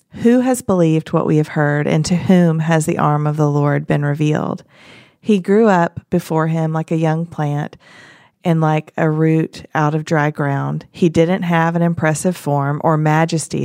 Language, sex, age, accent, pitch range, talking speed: English, female, 40-59, American, 150-175 Hz, 190 wpm